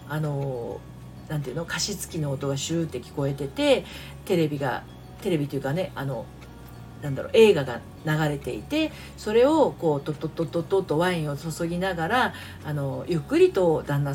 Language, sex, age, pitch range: Japanese, female, 40-59, 150-215 Hz